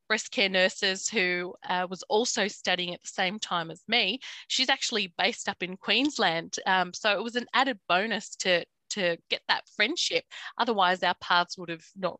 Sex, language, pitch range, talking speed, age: female, English, 180-245 Hz, 185 wpm, 20-39